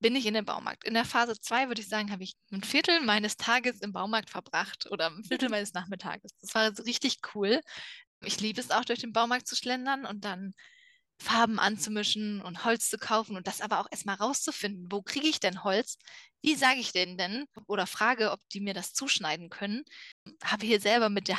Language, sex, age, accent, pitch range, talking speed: German, female, 20-39, German, 200-245 Hz, 215 wpm